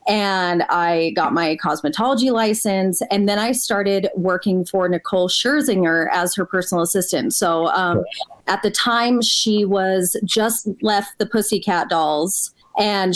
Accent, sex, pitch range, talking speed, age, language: American, female, 185-245 Hz, 140 wpm, 20-39, English